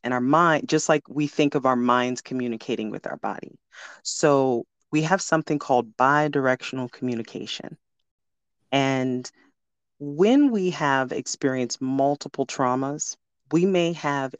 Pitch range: 130-160 Hz